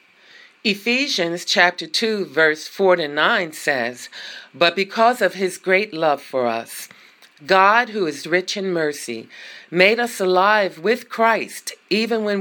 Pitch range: 170-225 Hz